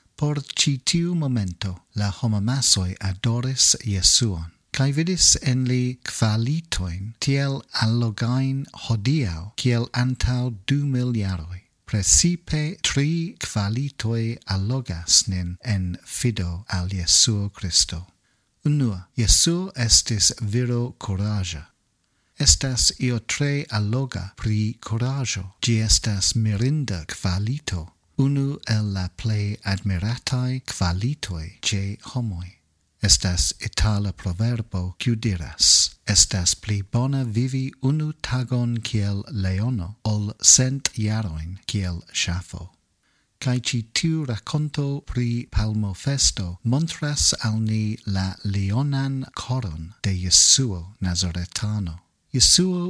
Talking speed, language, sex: 95 wpm, English, male